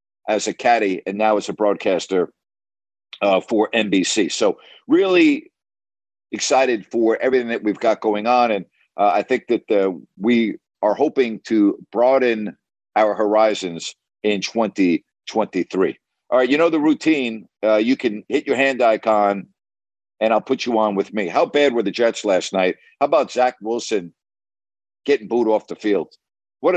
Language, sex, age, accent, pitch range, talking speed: English, male, 50-69, American, 100-125 Hz, 165 wpm